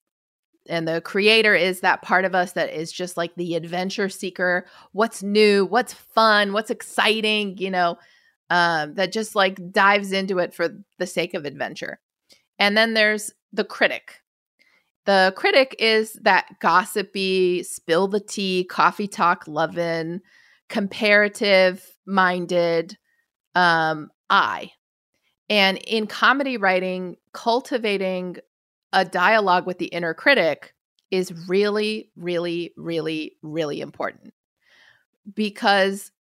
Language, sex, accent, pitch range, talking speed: English, female, American, 180-220 Hz, 120 wpm